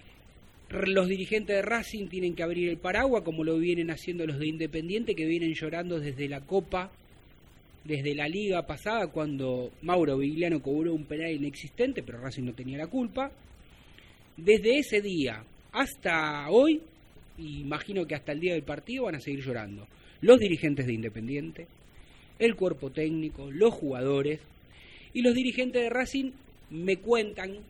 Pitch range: 150-215 Hz